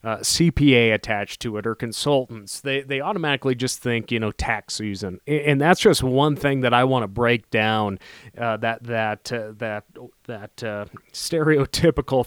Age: 30-49